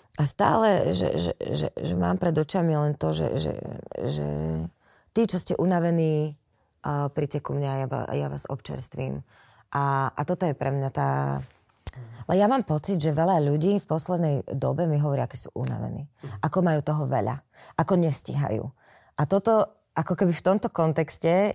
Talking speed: 170 wpm